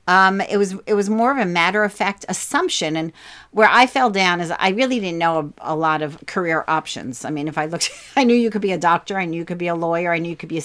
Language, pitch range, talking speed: English, 160-205 Hz, 300 wpm